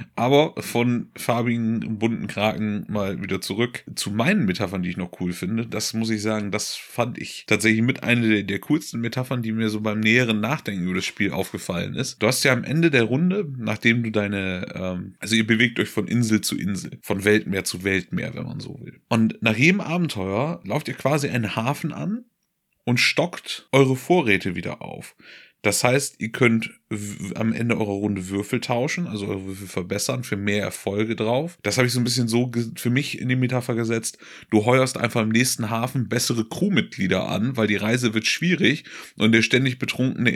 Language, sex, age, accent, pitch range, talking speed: German, male, 30-49, German, 105-130 Hz, 200 wpm